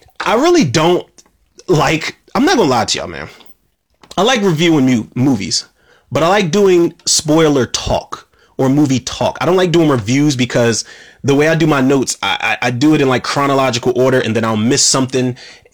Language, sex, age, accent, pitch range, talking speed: English, male, 30-49, American, 110-145 Hz, 195 wpm